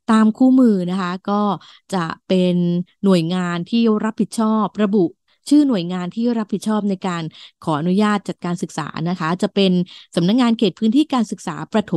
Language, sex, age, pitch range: Thai, female, 20-39, 175-210 Hz